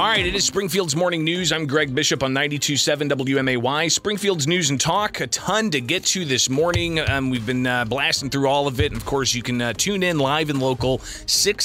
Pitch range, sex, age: 115-150 Hz, male, 30-49